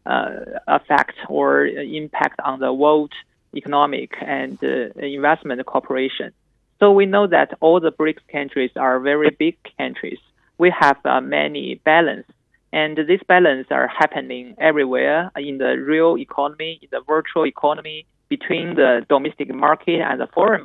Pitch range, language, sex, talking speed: 135-170 Hz, English, male, 145 wpm